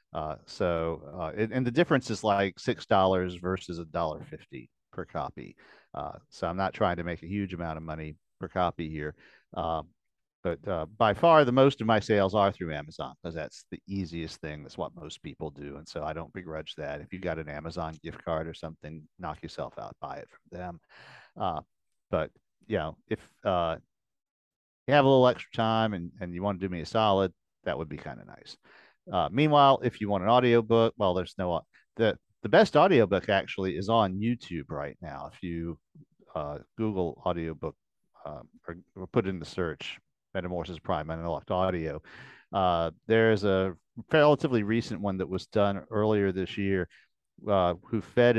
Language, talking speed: English, 195 wpm